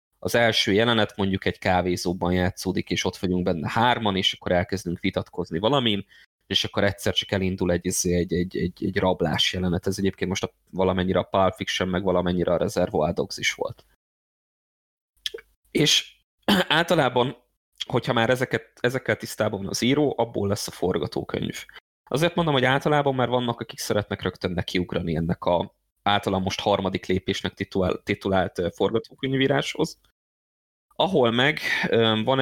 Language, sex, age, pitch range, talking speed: Hungarian, male, 20-39, 90-115 Hz, 145 wpm